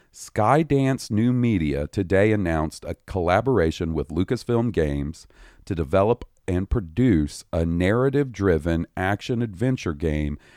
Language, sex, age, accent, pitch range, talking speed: English, male, 40-59, American, 80-110 Hz, 115 wpm